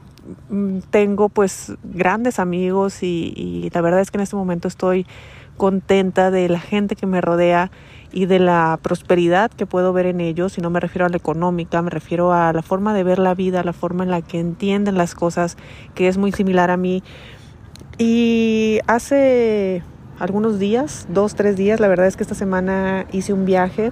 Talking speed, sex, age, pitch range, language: 190 wpm, female, 30-49, 180-210 Hz, Spanish